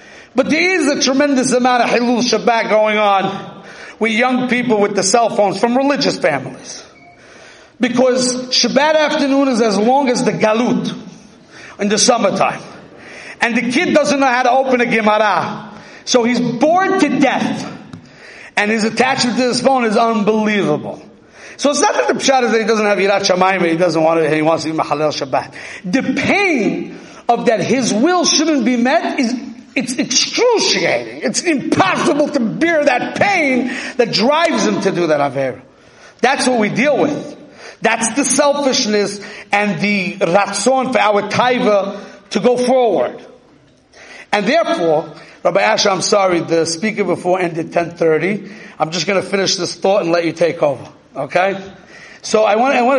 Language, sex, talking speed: English, male, 170 wpm